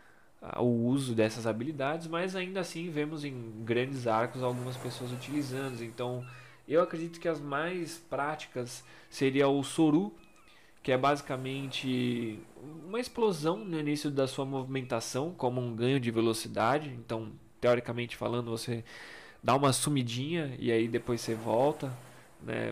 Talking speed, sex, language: 135 wpm, male, Portuguese